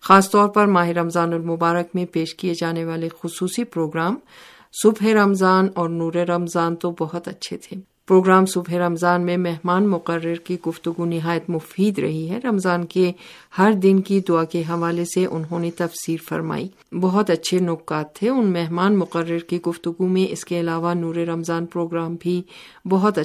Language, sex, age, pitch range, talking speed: Urdu, female, 50-69, 170-185 Hz, 170 wpm